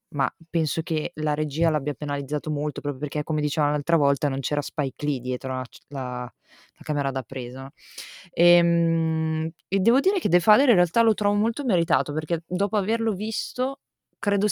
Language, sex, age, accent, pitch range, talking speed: Italian, female, 20-39, native, 145-170 Hz, 180 wpm